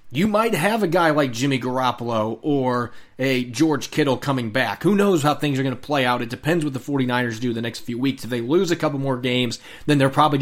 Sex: male